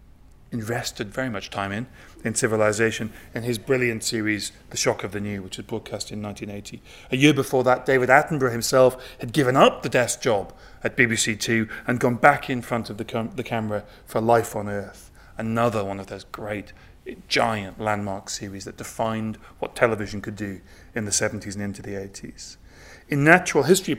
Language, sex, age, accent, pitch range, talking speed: English, male, 30-49, British, 100-120 Hz, 190 wpm